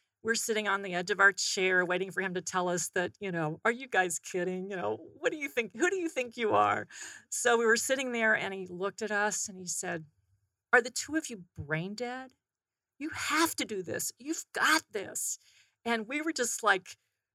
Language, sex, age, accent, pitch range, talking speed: English, female, 40-59, American, 180-230 Hz, 230 wpm